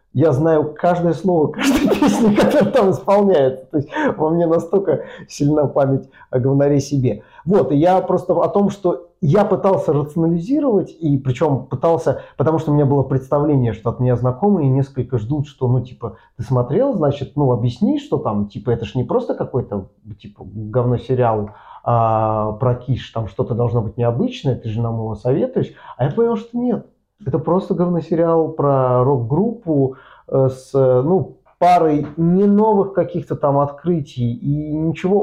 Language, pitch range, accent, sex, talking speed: Russian, 125-165 Hz, native, male, 160 wpm